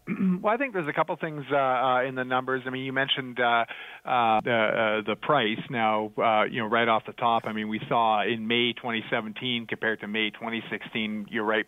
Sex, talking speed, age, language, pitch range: male, 225 wpm, 40-59, English, 105-120 Hz